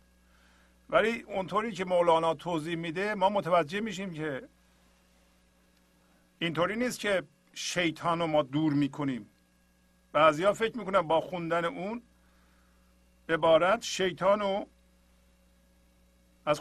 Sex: male